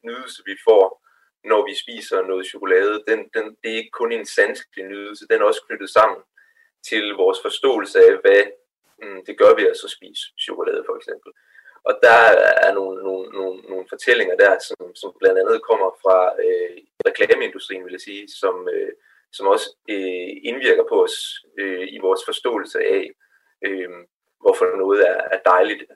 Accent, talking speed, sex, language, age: native, 170 wpm, male, Danish, 30-49